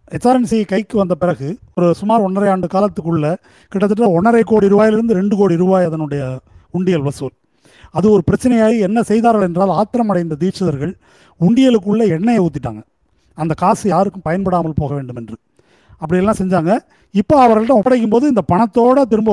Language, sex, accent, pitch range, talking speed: Tamil, male, native, 160-220 Hz, 140 wpm